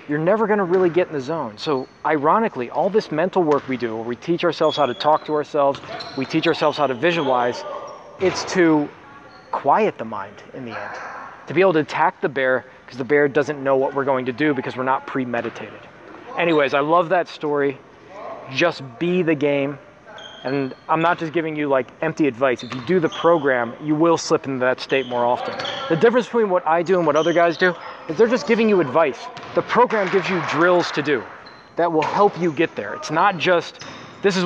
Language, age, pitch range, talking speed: English, 30-49, 140-180 Hz, 220 wpm